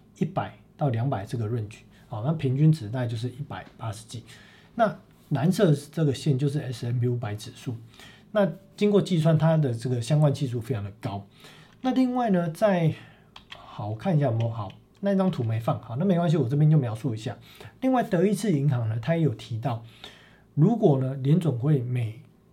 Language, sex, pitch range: Chinese, male, 115-160 Hz